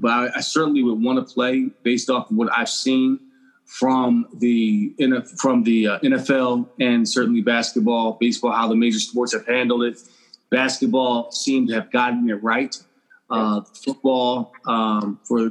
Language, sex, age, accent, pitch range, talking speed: English, male, 30-49, American, 120-175 Hz, 160 wpm